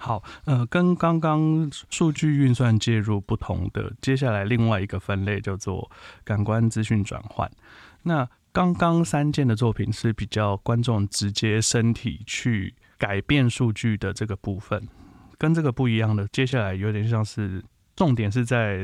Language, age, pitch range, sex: Chinese, 20-39, 105-125 Hz, male